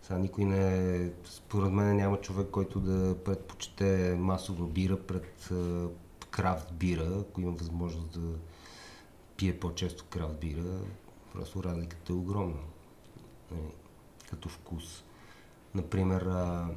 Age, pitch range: 30-49, 90-100 Hz